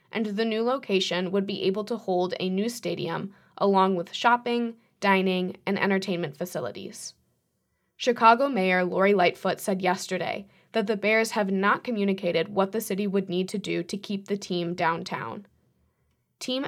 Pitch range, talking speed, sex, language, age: 180-210 Hz, 160 wpm, female, English, 20-39